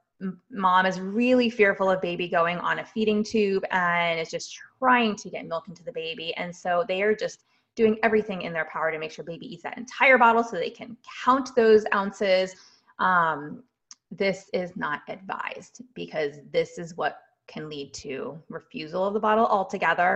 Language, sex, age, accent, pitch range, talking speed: English, female, 20-39, American, 165-215 Hz, 185 wpm